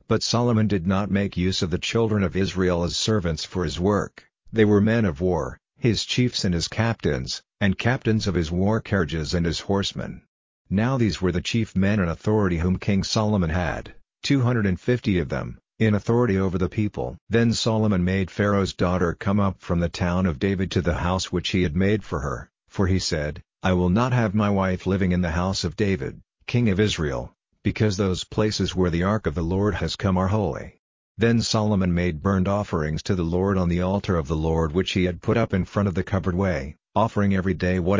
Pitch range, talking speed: 90-105 Hz, 220 wpm